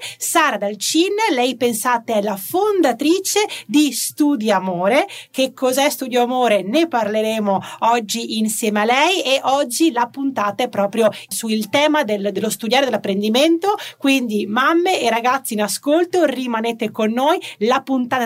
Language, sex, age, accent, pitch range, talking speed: Italian, female, 30-49, native, 215-275 Hz, 140 wpm